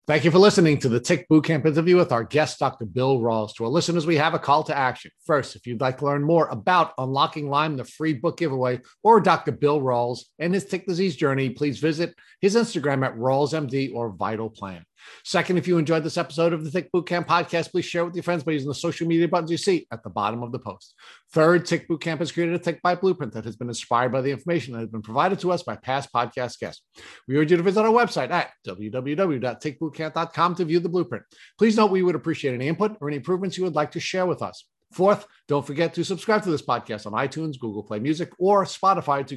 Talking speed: 240 wpm